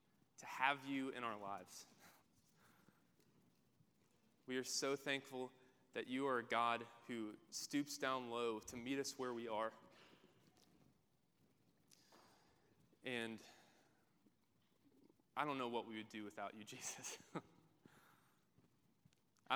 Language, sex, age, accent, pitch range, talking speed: English, male, 20-39, American, 115-135 Hz, 110 wpm